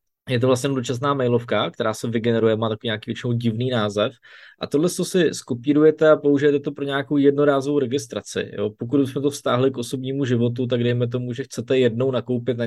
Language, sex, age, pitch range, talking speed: Czech, male, 20-39, 110-125 Hz, 200 wpm